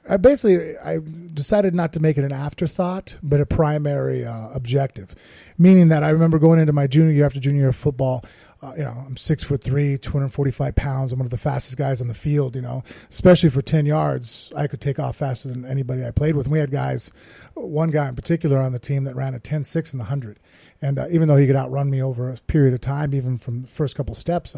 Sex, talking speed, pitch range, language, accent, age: male, 245 wpm, 130-155 Hz, English, American, 30-49